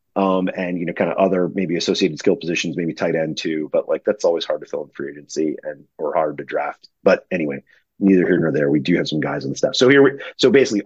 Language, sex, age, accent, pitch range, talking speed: English, male, 30-49, American, 95-130 Hz, 270 wpm